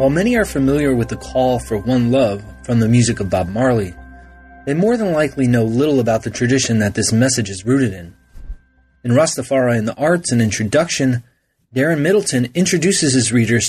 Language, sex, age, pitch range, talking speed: English, male, 20-39, 115-140 Hz, 190 wpm